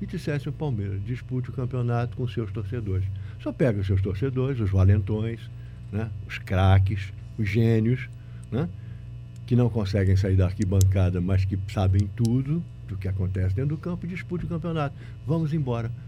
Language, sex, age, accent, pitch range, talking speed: Portuguese, male, 60-79, Brazilian, 110-145 Hz, 170 wpm